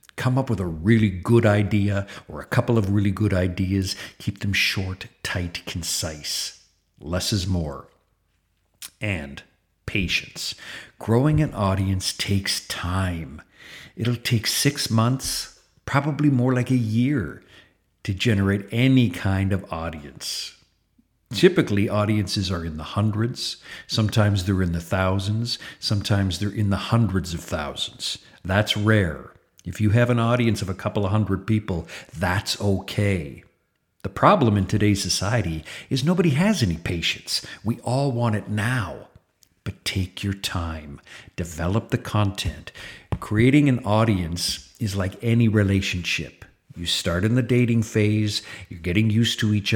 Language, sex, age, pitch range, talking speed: English, male, 50-69, 90-115 Hz, 140 wpm